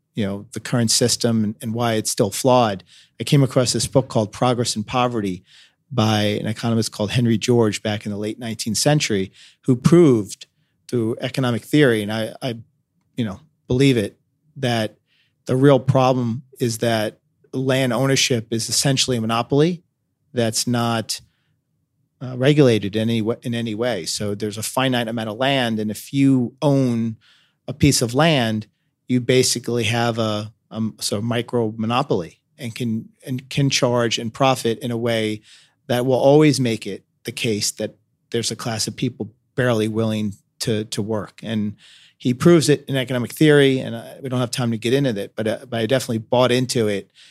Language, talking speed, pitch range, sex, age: English, 180 wpm, 110-130 Hz, male, 40-59